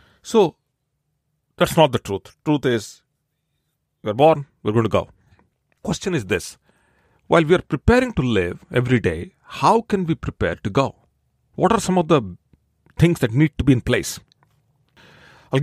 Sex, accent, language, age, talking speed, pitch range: male, Indian, English, 40-59, 165 wpm, 120-155 Hz